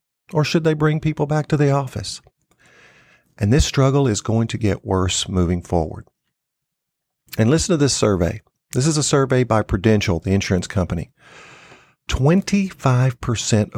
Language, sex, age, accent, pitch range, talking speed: English, male, 50-69, American, 95-140 Hz, 150 wpm